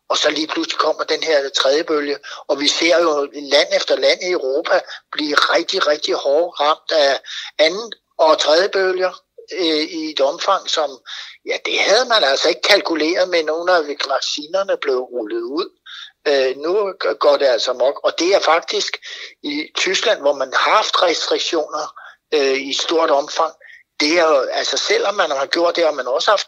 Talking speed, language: 185 wpm, Danish